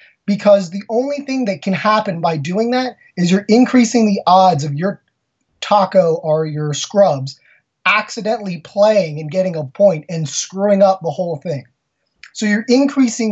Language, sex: English, male